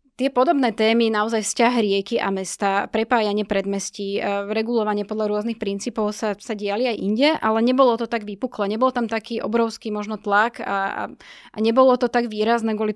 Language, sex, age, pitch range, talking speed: Slovak, female, 20-39, 200-230 Hz, 170 wpm